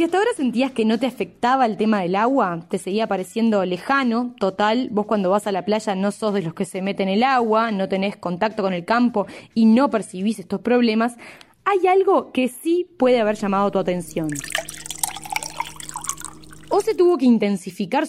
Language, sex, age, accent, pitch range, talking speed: Spanish, female, 20-39, Argentinian, 200-280 Hz, 190 wpm